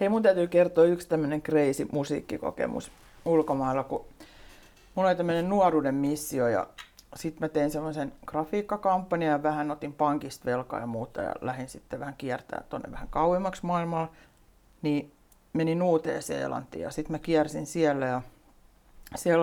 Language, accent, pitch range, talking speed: Finnish, native, 145-170 Hz, 145 wpm